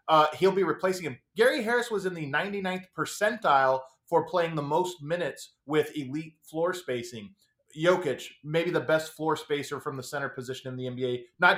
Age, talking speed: 30-49, 180 wpm